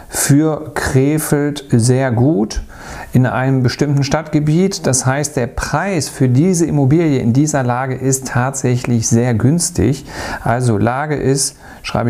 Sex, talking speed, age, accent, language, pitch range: male, 130 wpm, 40-59, German, German, 120-150 Hz